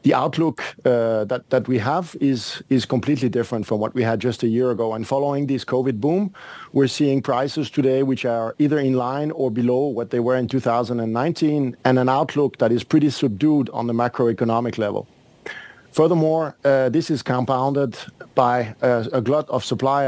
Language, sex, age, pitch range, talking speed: English, male, 50-69, 120-140 Hz, 185 wpm